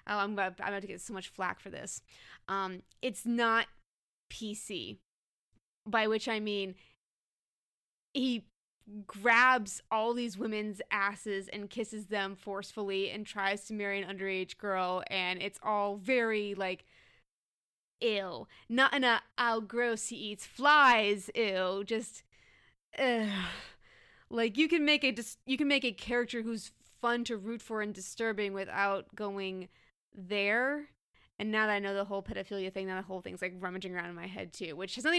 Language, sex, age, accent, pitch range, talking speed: English, female, 20-39, American, 195-235 Hz, 165 wpm